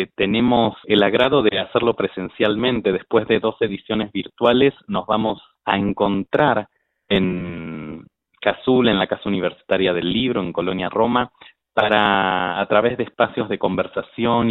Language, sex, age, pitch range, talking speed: Spanish, male, 30-49, 95-125 Hz, 135 wpm